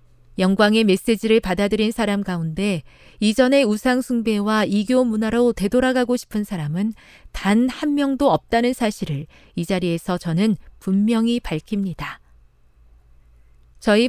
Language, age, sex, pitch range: Korean, 40-59, female, 175-240 Hz